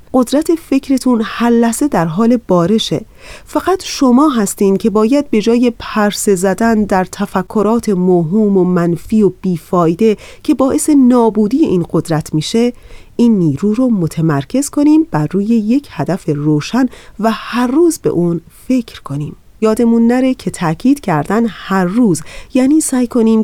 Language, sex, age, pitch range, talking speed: Persian, female, 30-49, 180-240 Hz, 140 wpm